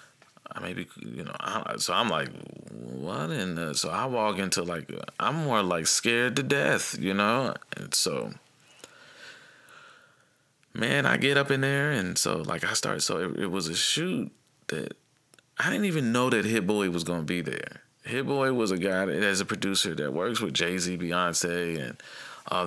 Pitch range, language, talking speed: 90-135 Hz, English, 185 wpm